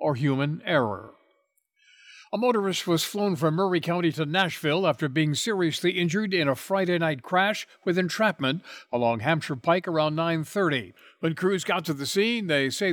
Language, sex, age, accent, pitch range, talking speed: English, male, 60-79, American, 130-185 Hz, 165 wpm